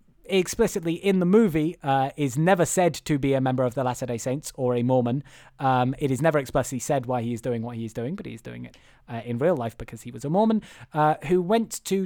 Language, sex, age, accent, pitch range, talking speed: English, male, 20-39, British, 135-195 Hz, 255 wpm